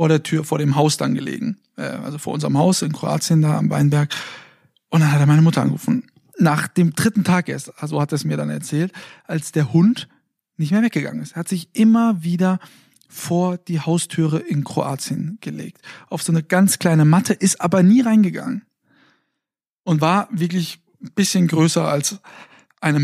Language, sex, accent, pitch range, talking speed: German, male, German, 155-185 Hz, 190 wpm